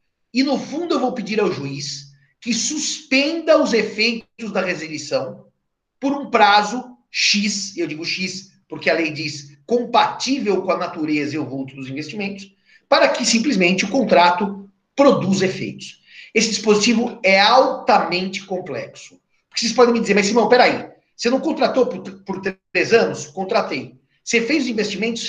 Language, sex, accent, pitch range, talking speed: Portuguese, male, Brazilian, 185-250 Hz, 155 wpm